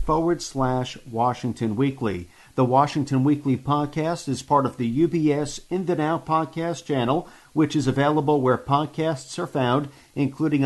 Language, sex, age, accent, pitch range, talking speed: English, male, 50-69, American, 130-155 Hz, 145 wpm